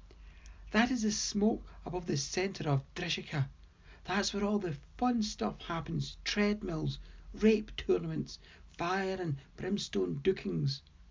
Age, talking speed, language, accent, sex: 60-79, 125 wpm, English, British, male